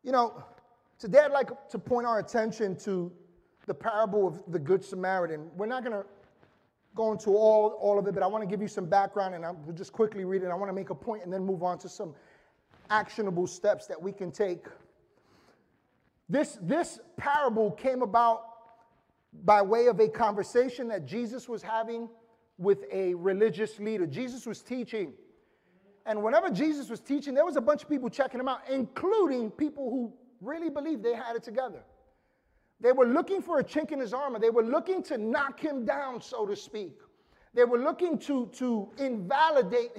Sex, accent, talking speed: male, American, 190 wpm